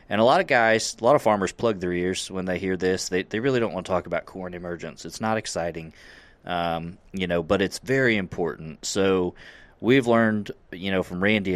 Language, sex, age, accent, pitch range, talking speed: English, male, 30-49, American, 90-100 Hz, 225 wpm